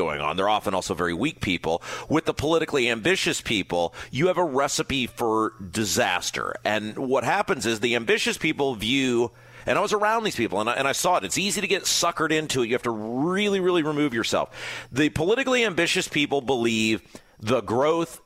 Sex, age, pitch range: male, 40-59, 120-185 Hz